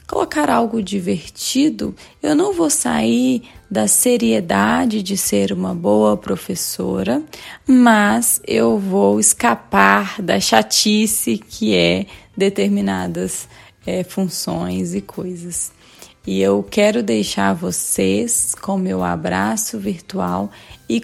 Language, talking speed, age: Portuguese, 105 wpm, 20-39